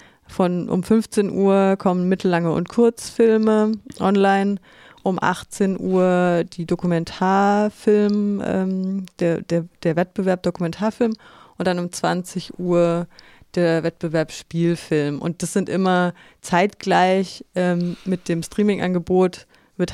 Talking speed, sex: 115 wpm, female